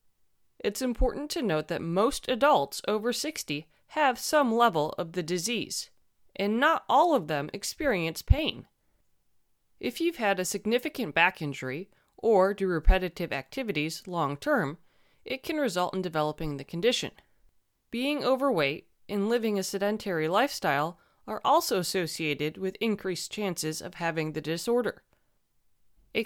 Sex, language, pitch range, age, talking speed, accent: female, English, 165-250 Hz, 30-49, 135 wpm, American